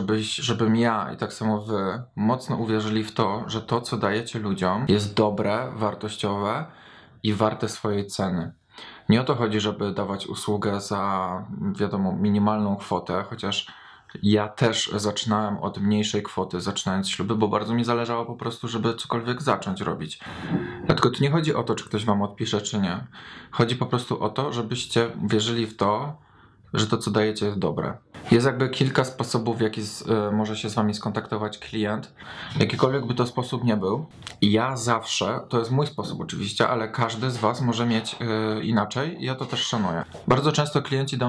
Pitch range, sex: 105-120 Hz, male